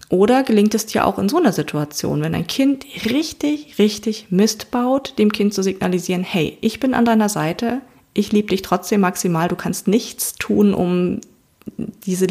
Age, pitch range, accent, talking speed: 30-49, 180-225 Hz, German, 180 wpm